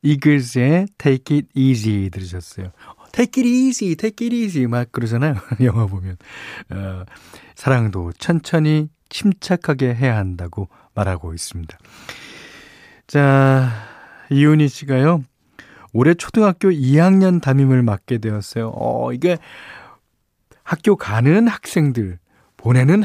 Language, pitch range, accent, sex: Korean, 110-155 Hz, native, male